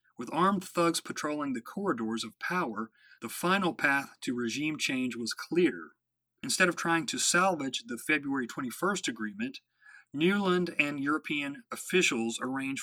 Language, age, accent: English, 40-59, American